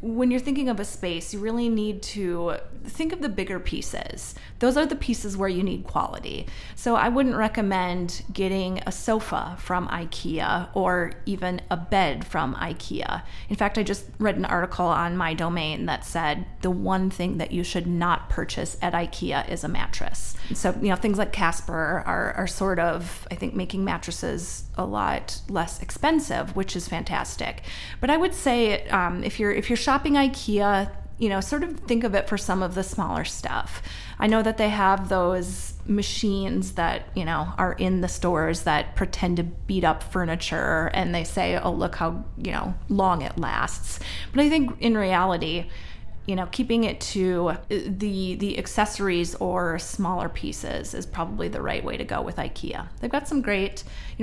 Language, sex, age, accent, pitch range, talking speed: English, female, 30-49, American, 180-225 Hz, 190 wpm